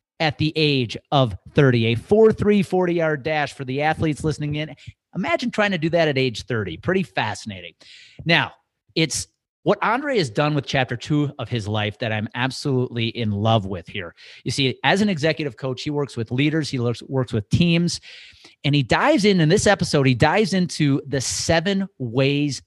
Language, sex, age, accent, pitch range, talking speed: English, male, 30-49, American, 120-155 Hz, 190 wpm